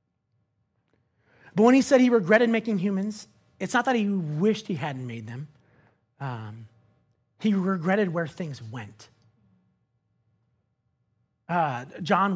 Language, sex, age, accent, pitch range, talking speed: English, male, 30-49, American, 115-165 Hz, 120 wpm